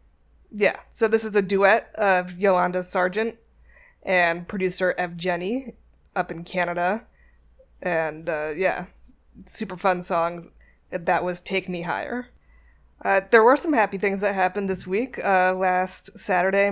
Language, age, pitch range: English, 20-39, 170-195 Hz